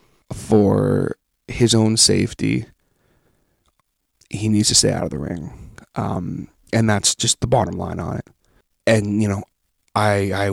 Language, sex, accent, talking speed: English, male, American, 150 wpm